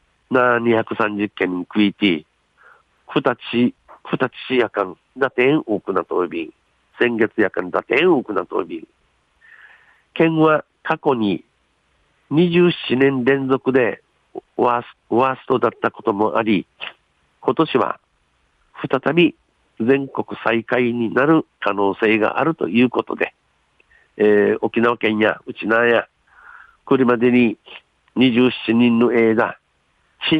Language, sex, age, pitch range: Japanese, male, 50-69, 110-130 Hz